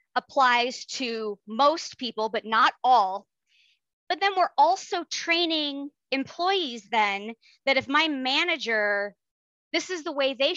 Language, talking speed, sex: English, 130 wpm, female